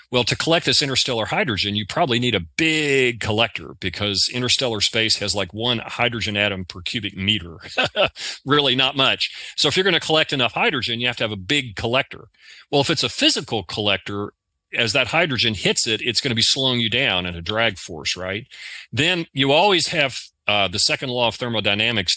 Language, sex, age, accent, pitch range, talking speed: English, male, 40-59, American, 100-130 Hz, 200 wpm